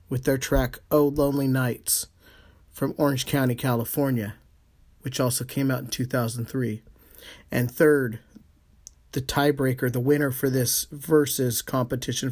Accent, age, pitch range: American, 40-59, 120-140 Hz